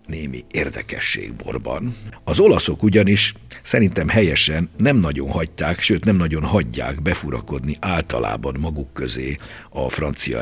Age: 60-79